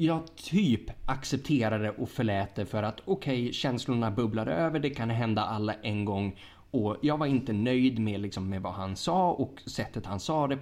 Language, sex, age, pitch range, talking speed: Swedish, male, 20-39, 105-160 Hz, 200 wpm